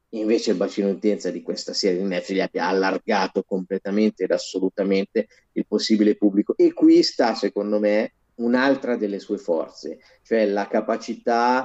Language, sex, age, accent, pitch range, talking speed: Italian, male, 30-49, native, 105-145 Hz, 155 wpm